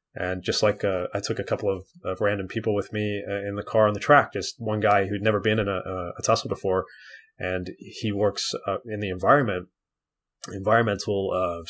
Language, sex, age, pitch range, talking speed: English, male, 30-49, 100-125 Hz, 215 wpm